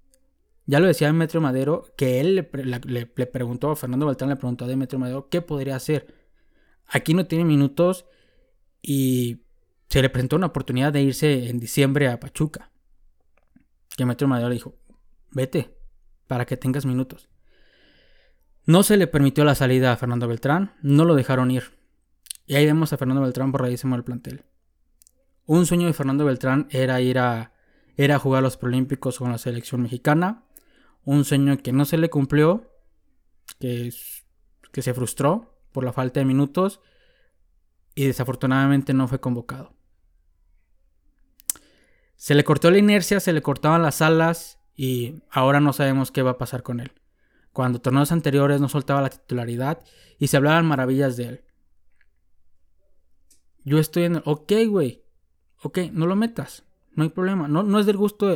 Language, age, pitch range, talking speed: Spanish, 20-39, 125-155 Hz, 165 wpm